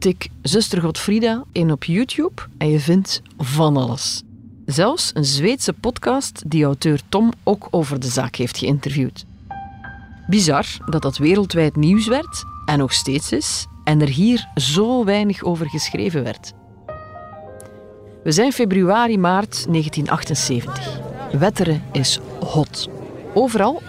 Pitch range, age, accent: 130-185 Hz, 40-59, Dutch